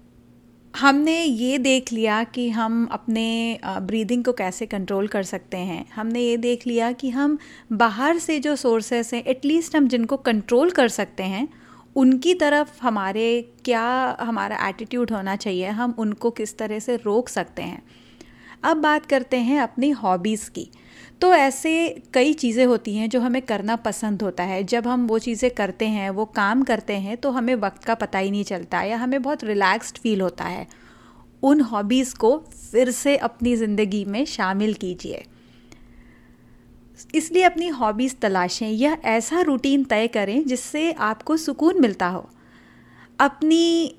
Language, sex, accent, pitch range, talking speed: Hindi, female, native, 210-265 Hz, 160 wpm